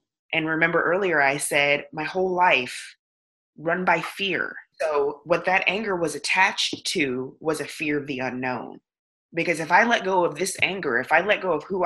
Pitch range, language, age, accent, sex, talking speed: 145-185 Hz, English, 20-39, American, female, 190 wpm